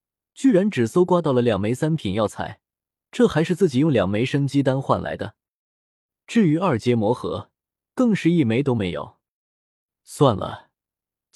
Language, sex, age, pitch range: Chinese, male, 20-39, 115-170 Hz